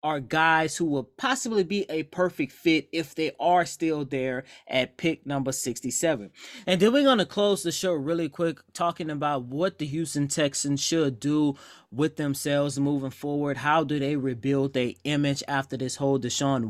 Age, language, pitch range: 20-39, English, 135-165 Hz